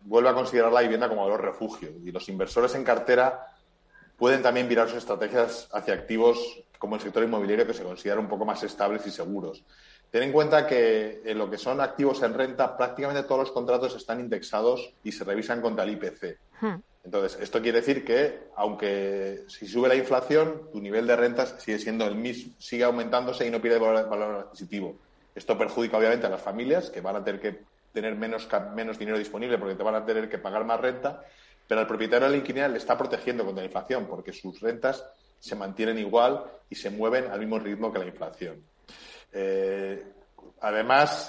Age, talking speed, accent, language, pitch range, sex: 30-49, 200 wpm, Spanish, Spanish, 105-125 Hz, male